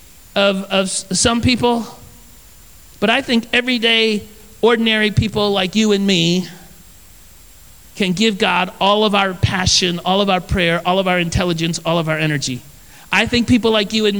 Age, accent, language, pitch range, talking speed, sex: 40-59, American, English, 140-180 Hz, 165 wpm, male